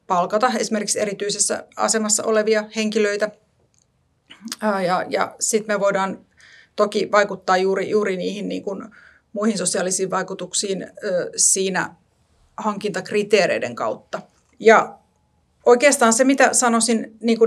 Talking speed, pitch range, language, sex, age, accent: 95 wpm, 200-235 Hz, Finnish, female, 30-49, native